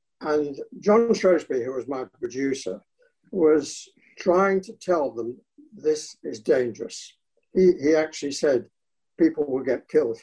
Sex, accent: male, British